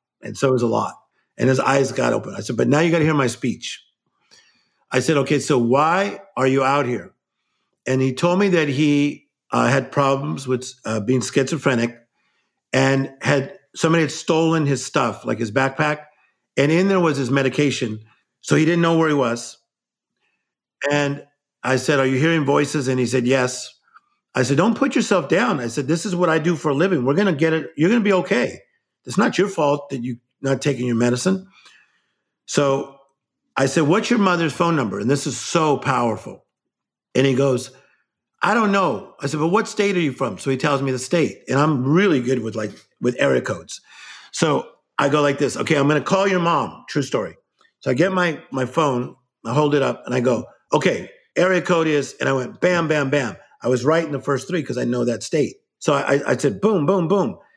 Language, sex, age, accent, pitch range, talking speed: English, male, 50-69, American, 130-165 Hz, 220 wpm